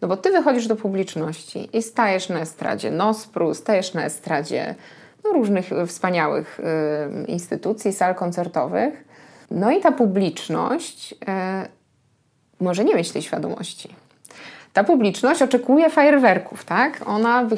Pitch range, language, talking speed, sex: 160-220 Hz, Polish, 120 wpm, female